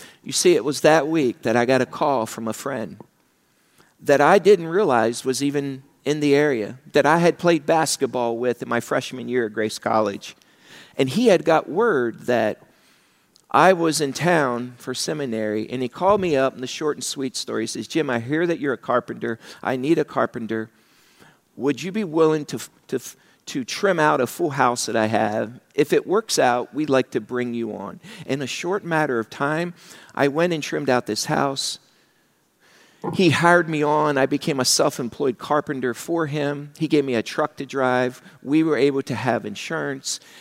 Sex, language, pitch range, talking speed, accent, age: male, English, 125-160 Hz, 200 wpm, American, 50-69